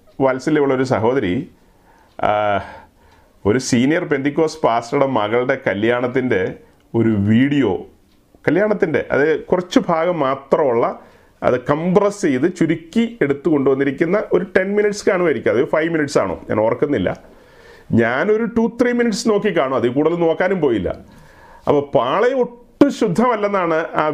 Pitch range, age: 130-215 Hz, 40-59